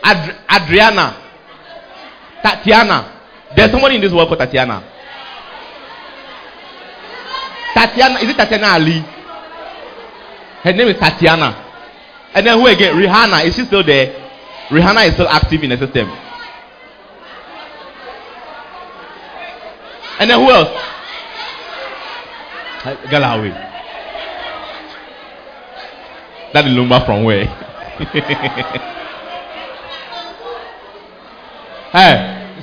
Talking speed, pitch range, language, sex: 85 wpm, 150-230 Hz, English, male